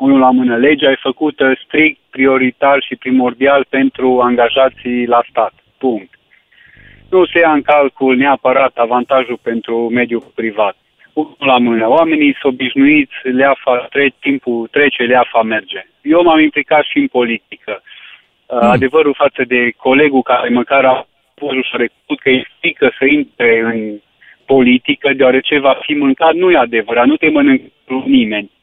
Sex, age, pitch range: male, 30-49, 130-185 Hz